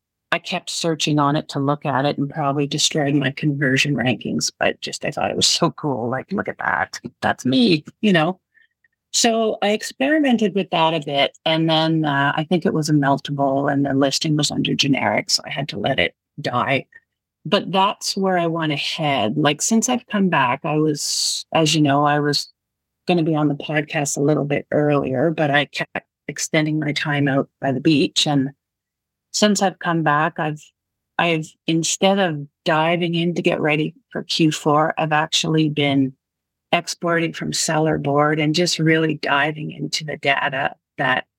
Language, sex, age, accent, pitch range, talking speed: English, female, 40-59, American, 145-170 Hz, 190 wpm